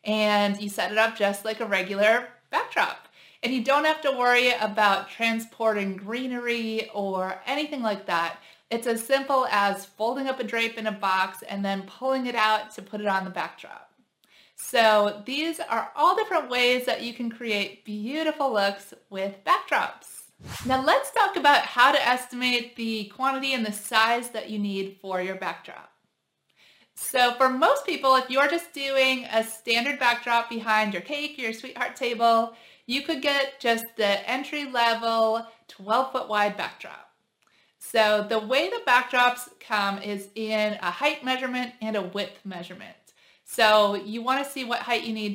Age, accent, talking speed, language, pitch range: 30-49, American, 170 wpm, English, 205-255 Hz